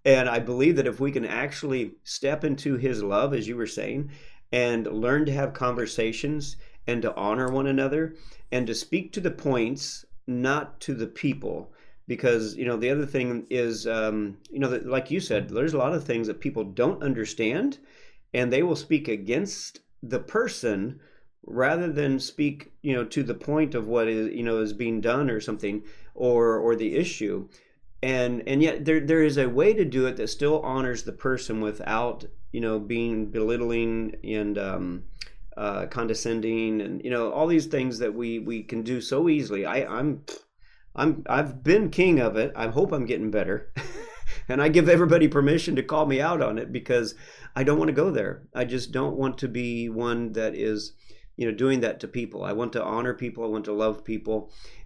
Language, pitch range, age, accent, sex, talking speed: English, 115-145 Hz, 40-59, American, male, 195 wpm